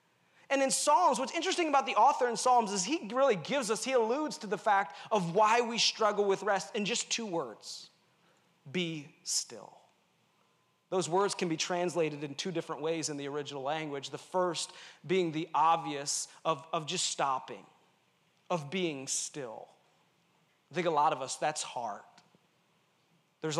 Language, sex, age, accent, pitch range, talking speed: English, male, 30-49, American, 170-245 Hz, 170 wpm